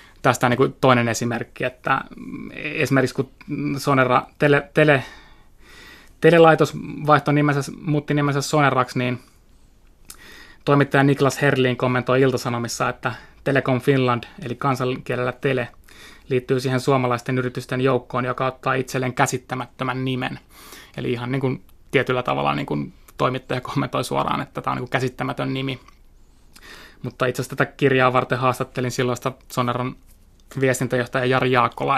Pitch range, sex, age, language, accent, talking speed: 120-135 Hz, male, 20-39, Finnish, native, 120 wpm